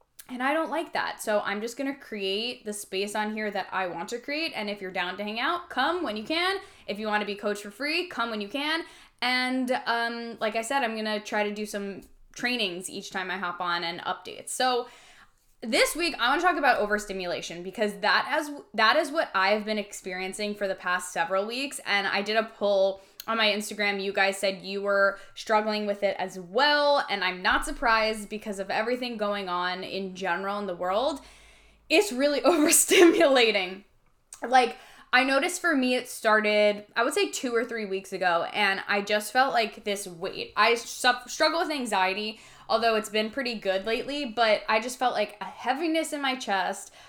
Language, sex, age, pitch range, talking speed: English, female, 10-29, 200-260 Hz, 210 wpm